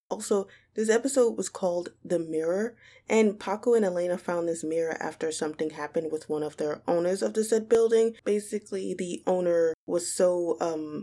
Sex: female